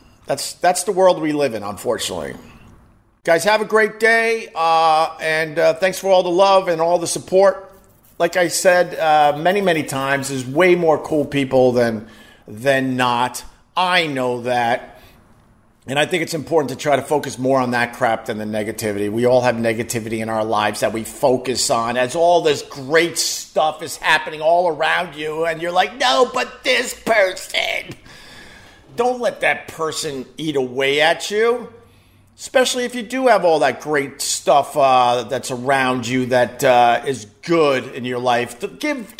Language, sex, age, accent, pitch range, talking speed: English, male, 50-69, American, 125-180 Hz, 180 wpm